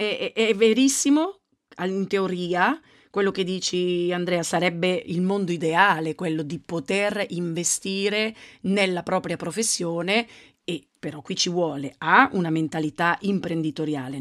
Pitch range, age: 170-205 Hz, 40-59